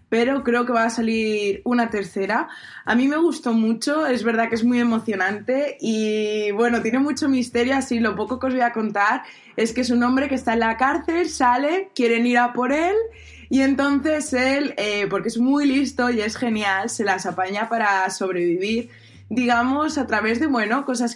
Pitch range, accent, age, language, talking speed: 215-270 Hz, Spanish, 20-39, Spanish, 200 wpm